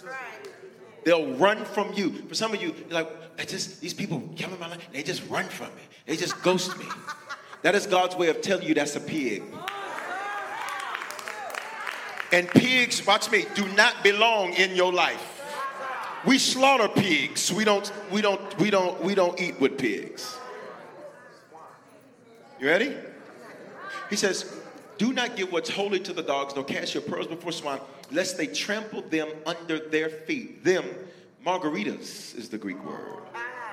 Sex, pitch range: male, 160-235 Hz